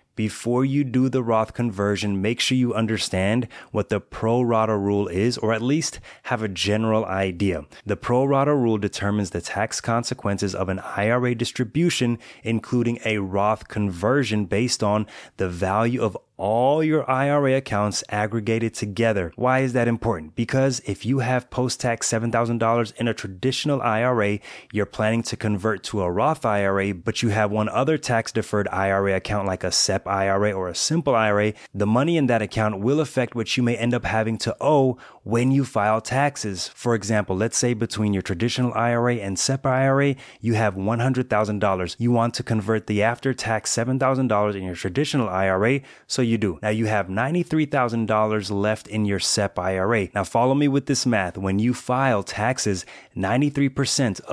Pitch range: 105-125 Hz